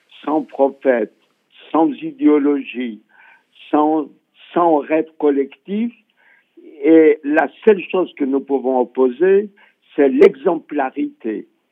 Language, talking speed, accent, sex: French, 90 wpm, French, male